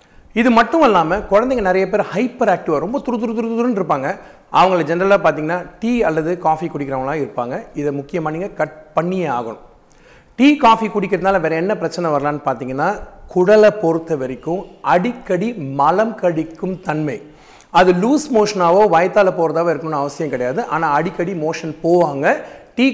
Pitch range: 160-210 Hz